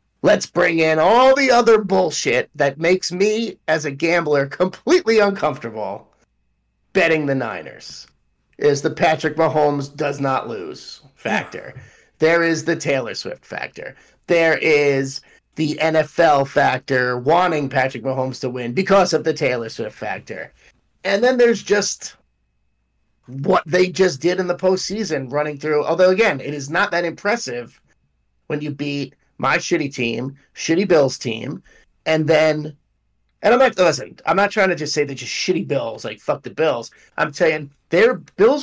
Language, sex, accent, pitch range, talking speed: English, male, American, 135-185 Hz, 155 wpm